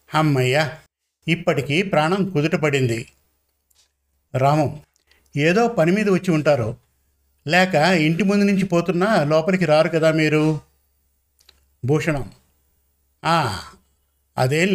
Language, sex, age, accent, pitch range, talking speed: Telugu, male, 50-69, native, 130-180 Hz, 85 wpm